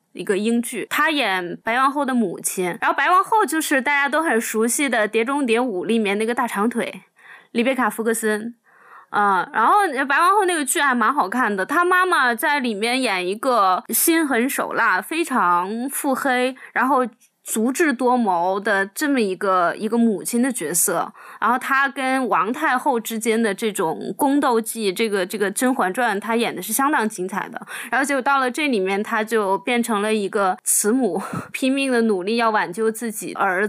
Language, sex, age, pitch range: Chinese, female, 20-39, 205-270 Hz